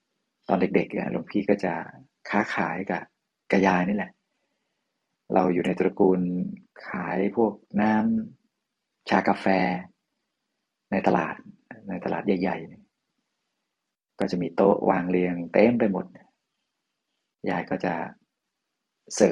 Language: Thai